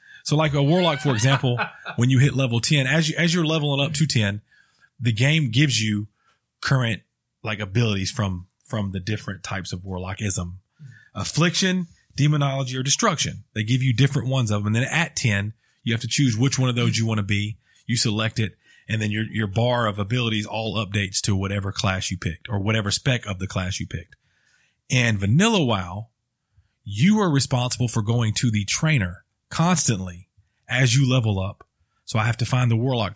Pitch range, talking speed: 105-140 Hz, 195 wpm